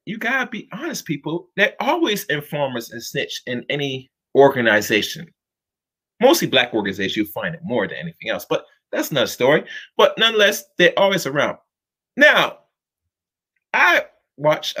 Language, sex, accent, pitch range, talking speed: English, male, American, 150-220 Hz, 145 wpm